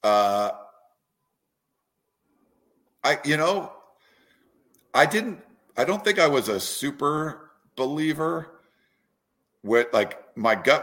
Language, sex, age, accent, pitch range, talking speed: English, male, 50-69, American, 95-125 Hz, 100 wpm